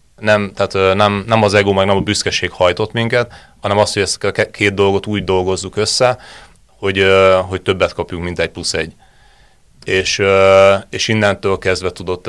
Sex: male